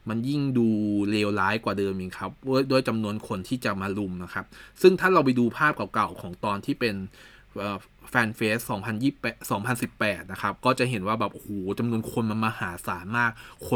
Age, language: 20-39, Thai